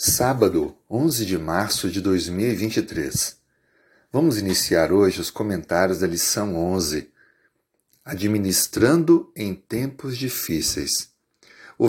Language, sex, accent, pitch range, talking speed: Portuguese, male, Brazilian, 95-125 Hz, 95 wpm